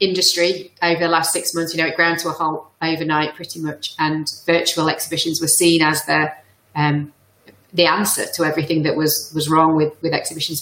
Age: 30-49